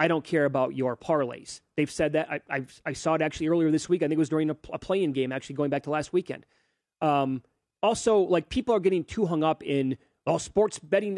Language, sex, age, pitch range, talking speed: English, male, 30-49, 140-170 Hz, 245 wpm